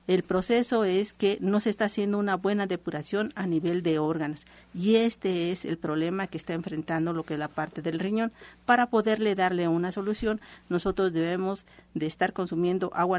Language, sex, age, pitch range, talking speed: Spanish, female, 50-69, 165-200 Hz, 185 wpm